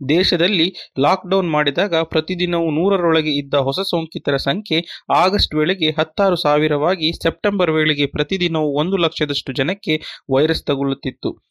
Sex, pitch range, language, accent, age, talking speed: male, 145-170 Hz, Kannada, native, 30-49, 110 wpm